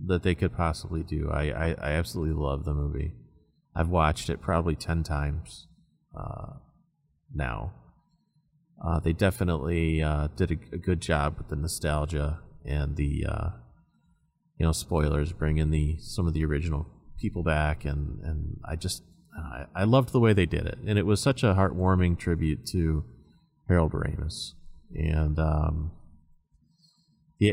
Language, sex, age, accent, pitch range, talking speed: English, male, 30-49, American, 80-105 Hz, 155 wpm